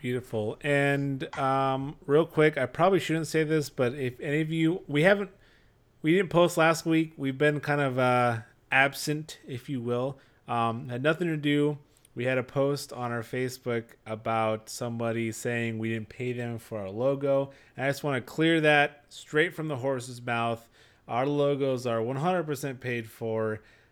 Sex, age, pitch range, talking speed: male, 30-49, 120-155 Hz, 180 wpm